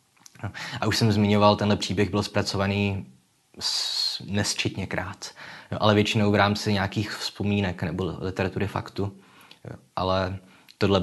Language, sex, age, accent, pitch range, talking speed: Czech, male, 20-39, native, 90-100 Hz, 115 wpm